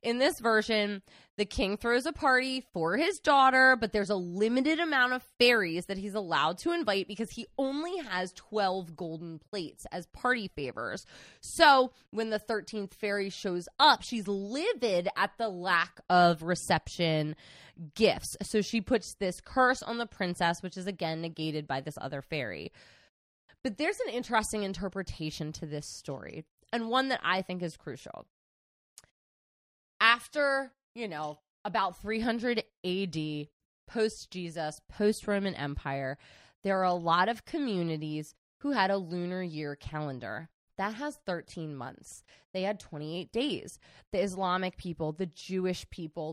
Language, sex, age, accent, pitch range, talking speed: English, female, 20-39, American, 165-230 Hz, 150 wpm